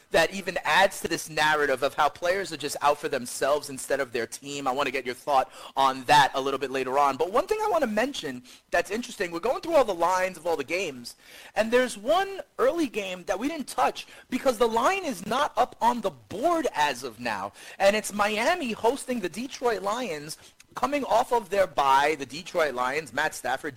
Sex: male